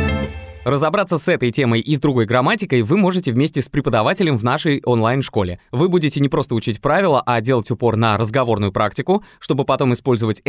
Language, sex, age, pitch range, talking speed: Russian, male, 20-39, 115-170 Hz, 175 wpm